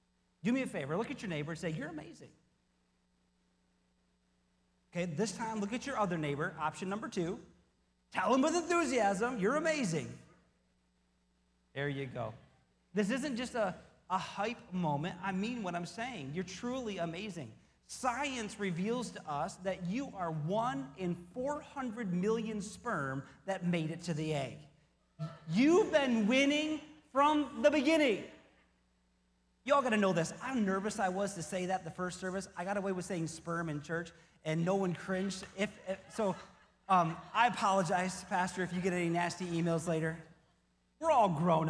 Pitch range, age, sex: 155-235 Hz, 40-59, male